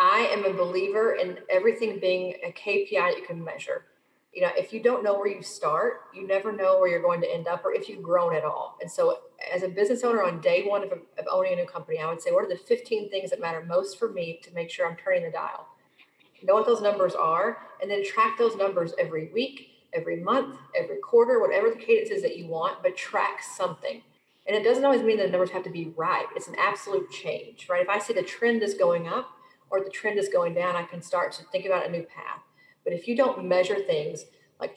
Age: 40-59